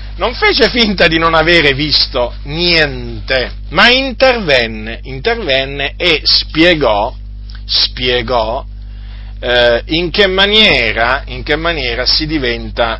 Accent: native